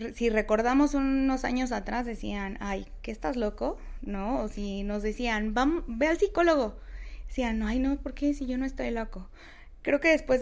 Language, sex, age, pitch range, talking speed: Spanish, female, 20-39, 210-250 Hz, 180 wpm